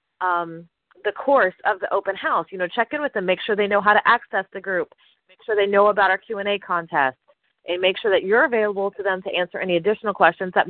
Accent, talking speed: American, 245 wpm